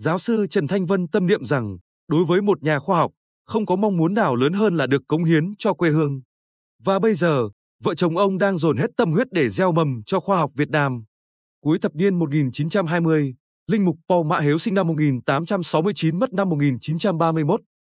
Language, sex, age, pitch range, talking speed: Vietnamese, male, 20-39, 150-195 Hz, 210 wpm